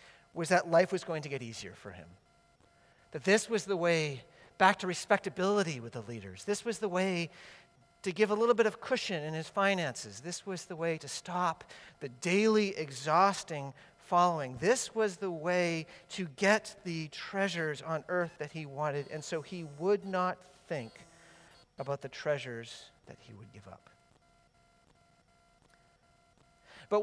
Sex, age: male, 40-59